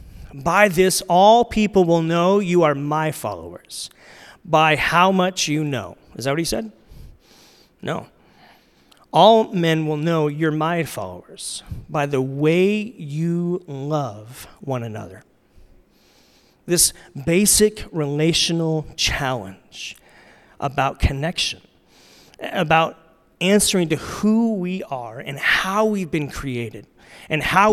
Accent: American